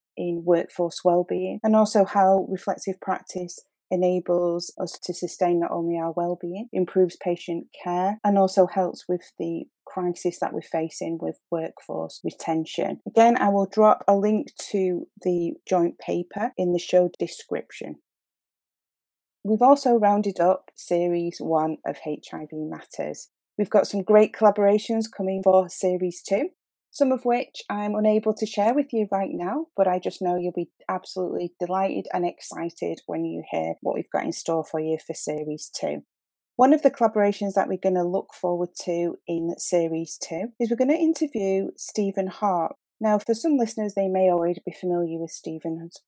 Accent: British